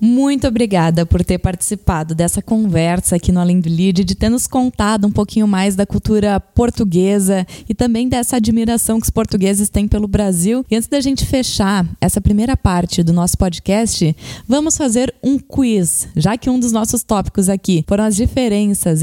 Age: 20-39